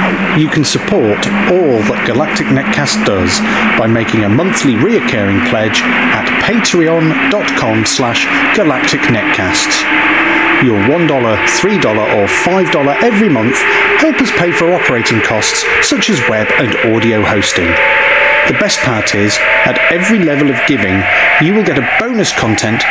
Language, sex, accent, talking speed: English, male, British, 140 wpm